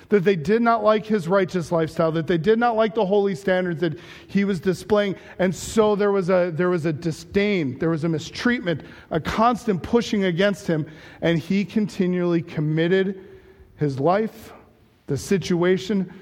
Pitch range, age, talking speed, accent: 135-185 Hz, 40-59, 170 wpm, American